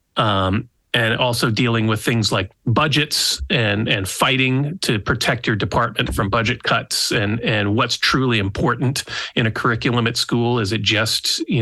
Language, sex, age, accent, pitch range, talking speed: English, male, 30-49, American, 110-140 Hz, 165 wpm